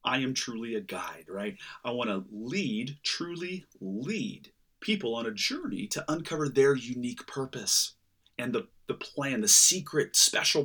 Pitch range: 130-175 Hz